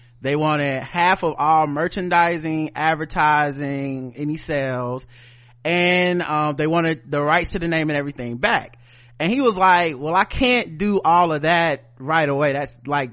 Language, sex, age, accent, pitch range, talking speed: English, male, 30-49, American, 135-180 Hz, 165 wpm